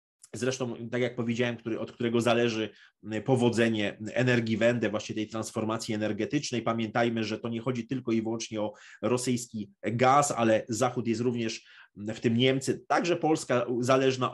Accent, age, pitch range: native, 30-49, 115-130 Hz